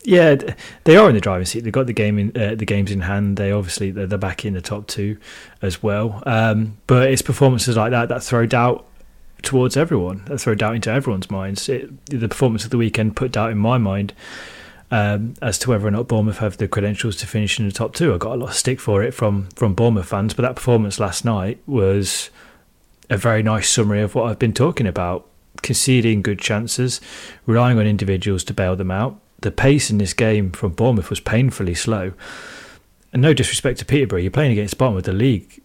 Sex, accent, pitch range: male, British, 100-125 Hz